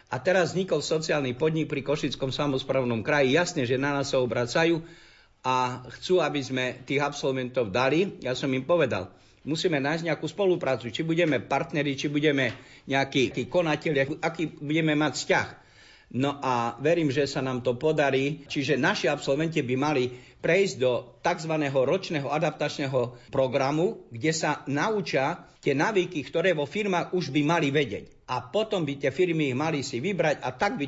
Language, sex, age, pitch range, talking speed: Slovak, male, 60-79, 130-170 Hz, 165 wpm